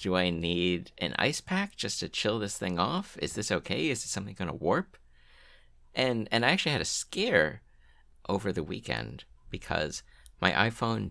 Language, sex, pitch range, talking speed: English, male, 65-95 Hz, 180 wpm